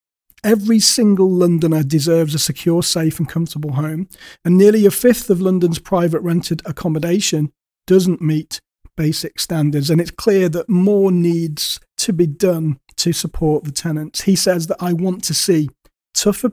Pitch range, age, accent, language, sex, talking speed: 160-185 Hz, 40-59, British, English, male, 160 wpm